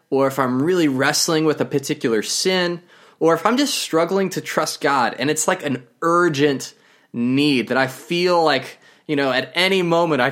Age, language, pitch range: 20-39, English, 125-165 Hz